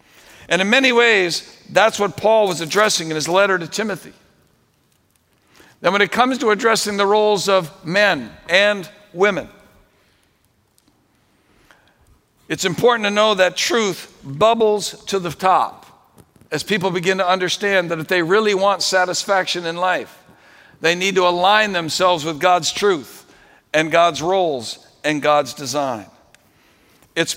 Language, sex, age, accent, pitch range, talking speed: English, male, 60-79, American, 170-210 Hz, 140 wpm